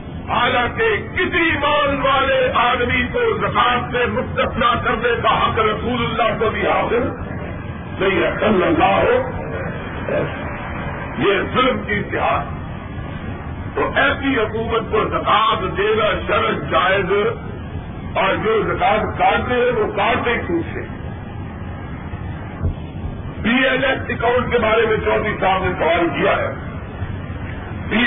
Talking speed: 120 wpm